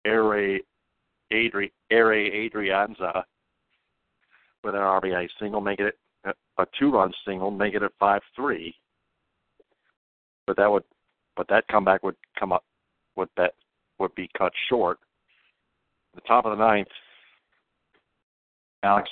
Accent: American